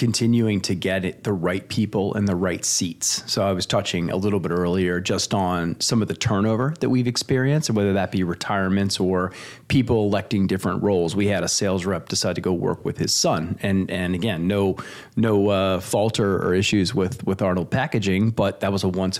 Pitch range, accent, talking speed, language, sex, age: 95-110 Hz, American, 215 wpm, English, male, 30-49